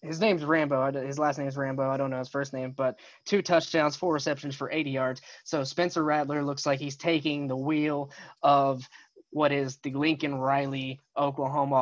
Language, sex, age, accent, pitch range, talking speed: English, male, 20-39, American, 135-150 Hz, 185 wpm